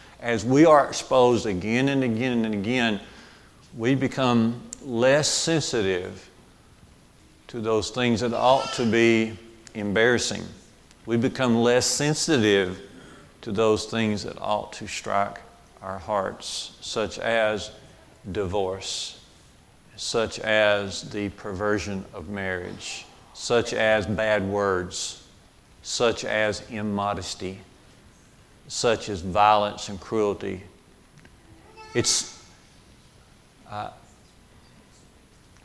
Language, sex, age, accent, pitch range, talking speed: English, male, 50-69, American, 105-125 Hz, 95 wpm